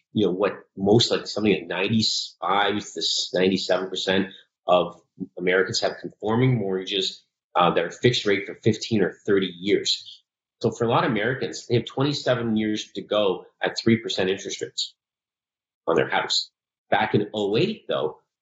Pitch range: 100-125 Hz